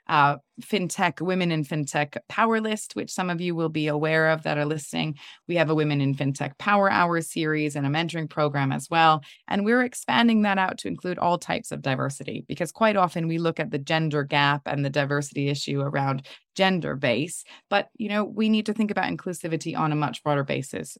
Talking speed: 210 wpm